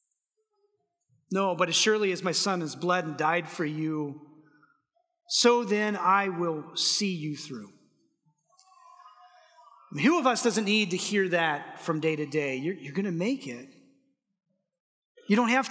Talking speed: 155 wpm